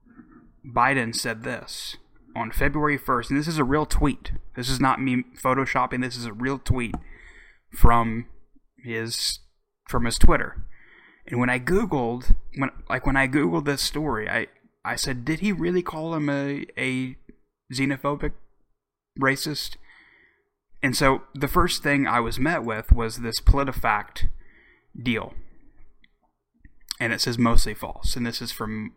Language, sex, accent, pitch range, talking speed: English, male, American, 115-135 Hz, 150 wpm